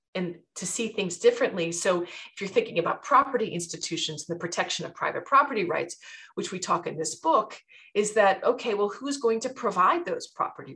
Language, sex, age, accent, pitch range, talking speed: English, female, 40-59, American, 175-250 Hz, 195 wpm